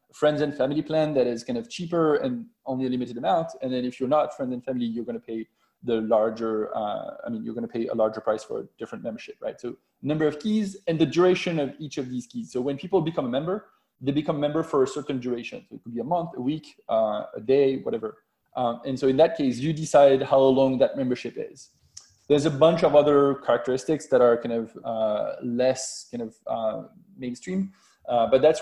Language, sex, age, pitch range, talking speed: English, male, 20-39, 125-160 Hz, 235 wpm